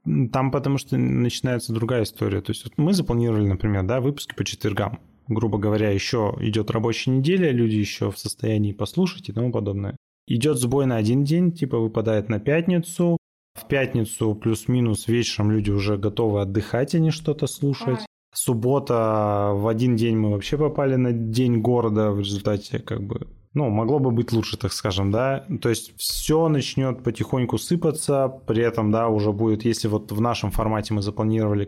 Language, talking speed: Russian, 170 wpm